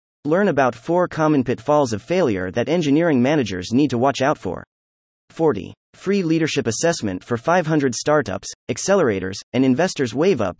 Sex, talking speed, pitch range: male, 155 wpm, 110-155 Hz